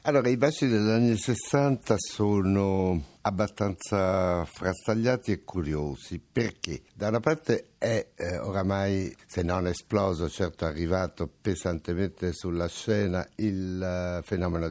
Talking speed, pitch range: 120 wpm, 80-95 Hz